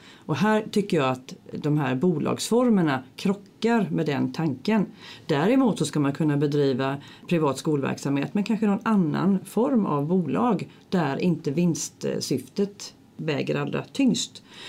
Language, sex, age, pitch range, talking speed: Swedish, female, 40-59, 150-230 Hz, 135 wpm